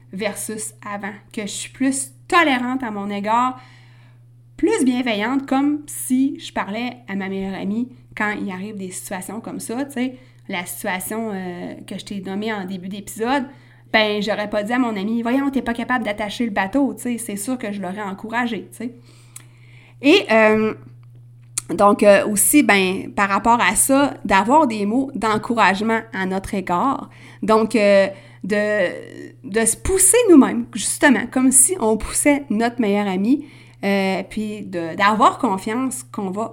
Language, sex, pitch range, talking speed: French, female, 195-255 Hz, 170 wpm